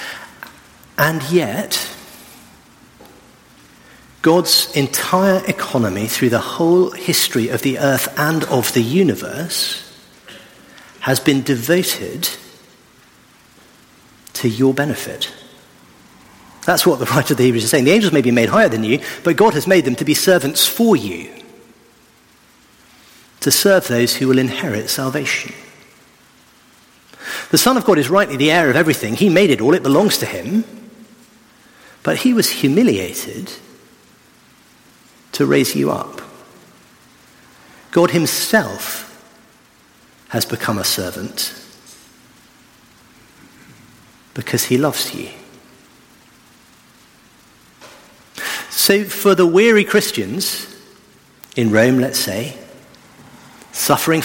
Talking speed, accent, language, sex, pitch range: 115 wpm, British, English, male, 125-185 Hz